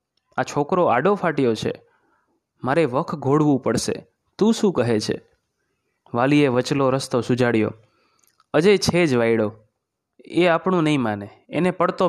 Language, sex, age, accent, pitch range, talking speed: Gujarati, male, 30-49, native, 125-155 Hz, 135 wpm